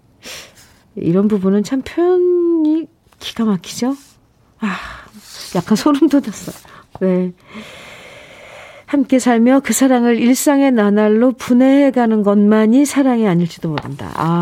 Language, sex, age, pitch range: Korean, female, 40-59, 180-255 Hz